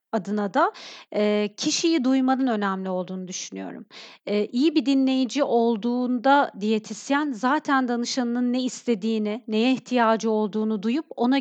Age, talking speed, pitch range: 40-59, 110 wpm, 220-265 Hz